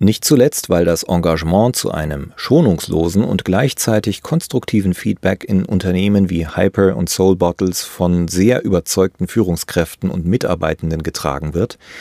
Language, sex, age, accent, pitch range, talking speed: German, male, 40-59, German, 85-105 Hz, 135 wpm